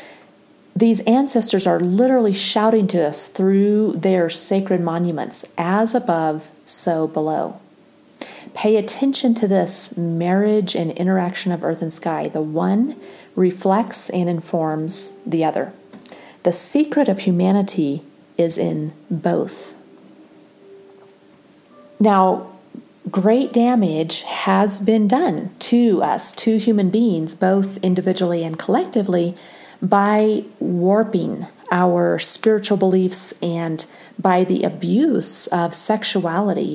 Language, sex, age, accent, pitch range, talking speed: English, female, 40-59, American, 175-220 Hz, 110 wpm